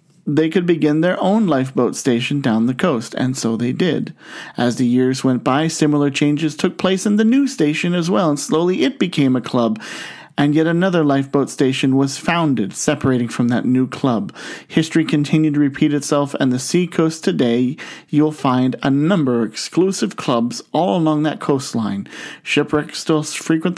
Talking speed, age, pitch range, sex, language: 175 wpm, 40-59, 130-160 Hz, male, English